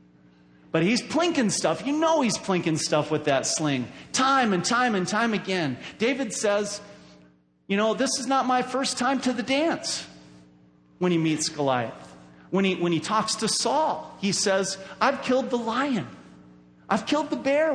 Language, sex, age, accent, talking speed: English, male, 40-59, American, 170 wpm